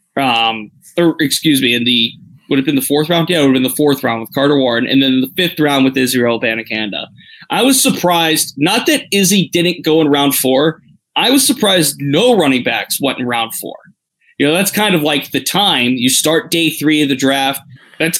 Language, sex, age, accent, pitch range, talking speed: English, male, 20-39, American, 135-170 Hz, 220 wpm